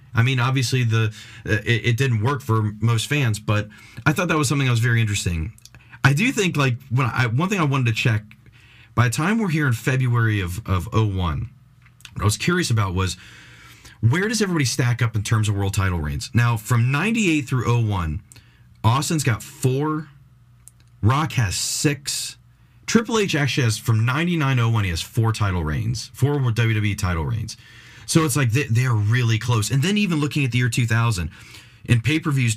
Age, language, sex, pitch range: 30-49, English, male, 110-135 Hz